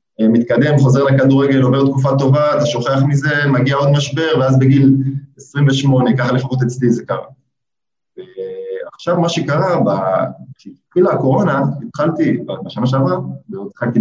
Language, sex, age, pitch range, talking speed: Hebrew, male, 20-39, 110-140 Hz, 125 wpm